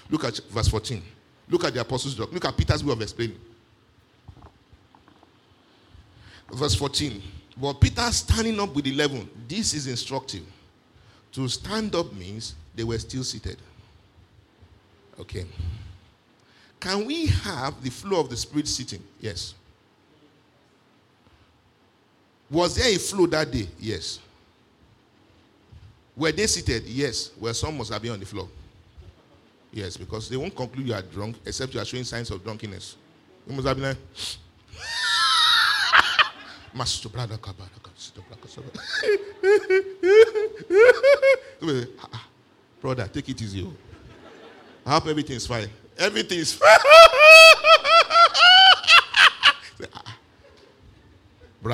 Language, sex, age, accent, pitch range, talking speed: English, male, 50-69, Nigerian, 100-155 Hz, 115 wpm